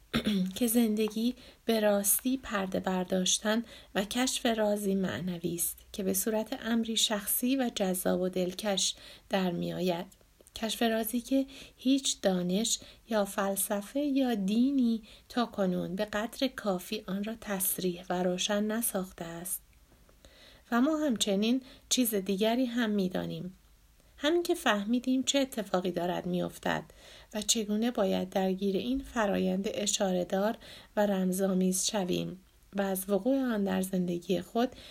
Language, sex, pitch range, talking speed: Persian, female, 185-235 Hz, 125 wpm